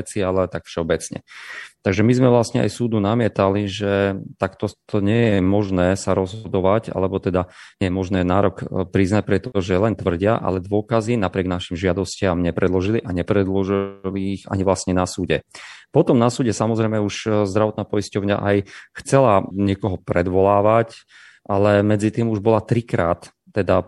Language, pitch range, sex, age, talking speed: Slovak, 90-105 Hz, male, 30-49, 145 wpm